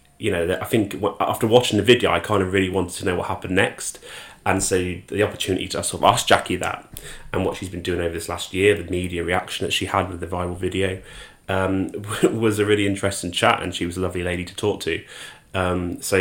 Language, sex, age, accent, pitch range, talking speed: English, male, 20-39, British, 90-100 Hz, 240 wpm